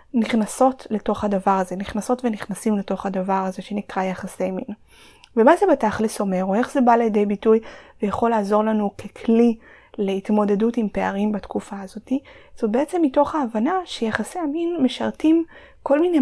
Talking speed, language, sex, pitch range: 150 wpm, Hebrew, female, 200-240 Hz